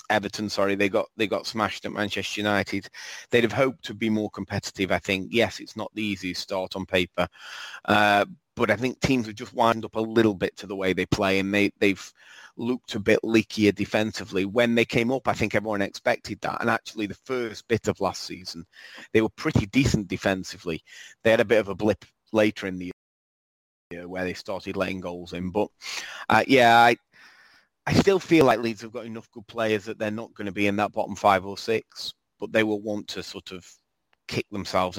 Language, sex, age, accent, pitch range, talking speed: English, male, 30-49, British, 90-110 Hz, 215 wpm